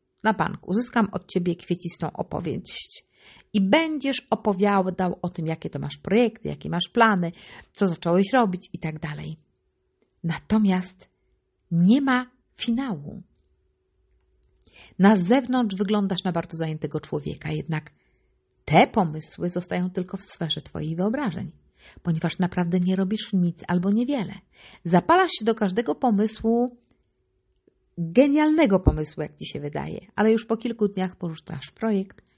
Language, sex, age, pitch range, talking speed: Polish, female, 50-69, 160-215 Hz, 130 wpm